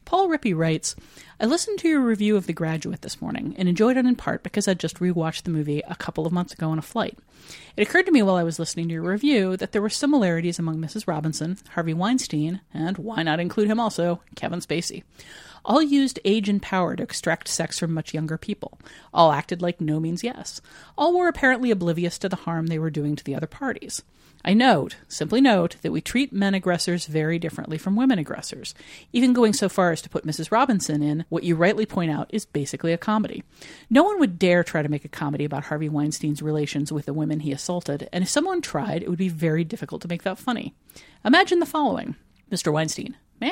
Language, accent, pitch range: English, American, 160-215 Hz